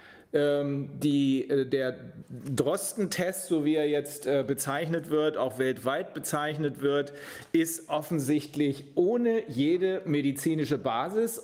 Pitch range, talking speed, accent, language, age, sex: 140-175 Hz, 100 wpm, German, German, 40-59, male